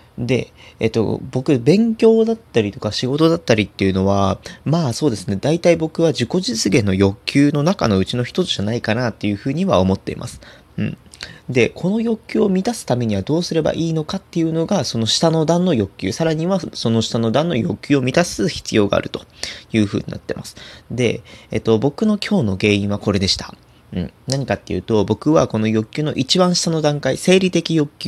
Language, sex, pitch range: Japanese, male, 105-160 Hz